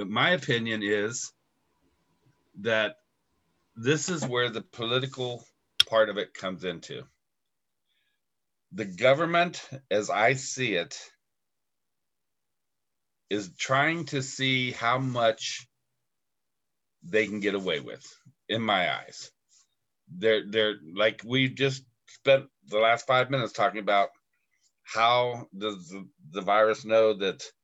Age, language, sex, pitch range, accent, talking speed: 50-69, English, male, 105-130 Hz, American, 115 wpm